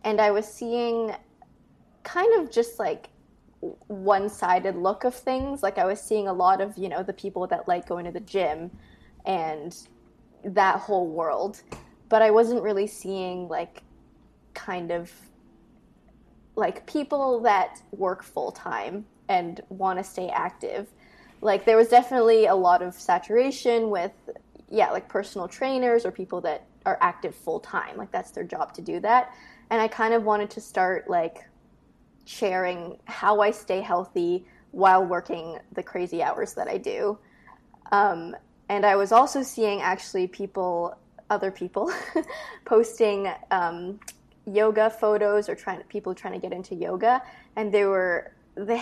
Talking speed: 155 wpm